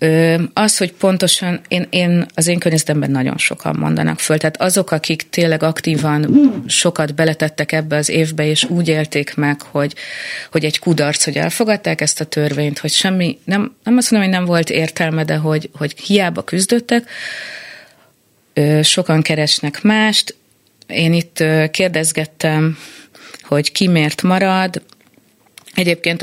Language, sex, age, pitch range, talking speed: Hungarian, female, 30-49, 150-180 Hz, 140 wpm